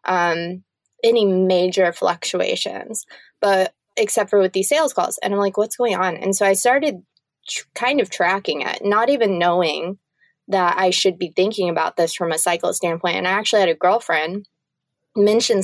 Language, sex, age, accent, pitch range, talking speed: English, female, 20-39, American, 175-215 Hz, 180 wpm